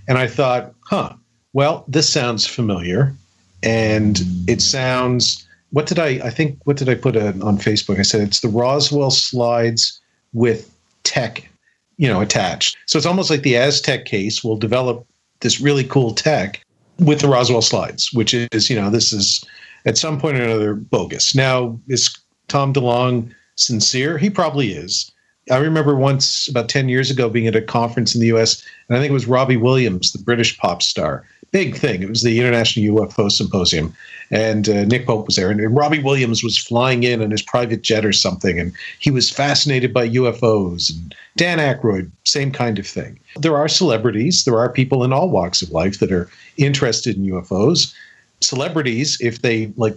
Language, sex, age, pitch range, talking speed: English, male, 50-69, 110-135 Hz, 185 wpm